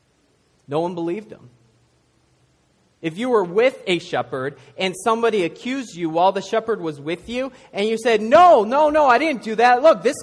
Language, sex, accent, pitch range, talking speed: English, male, American, 155-235 Hz, 190 wpm